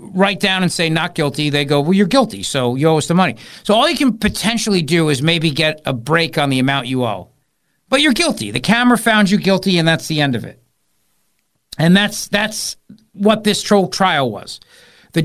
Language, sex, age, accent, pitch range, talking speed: English, male, 50-69, American, 145-195 Hz, 220 wpm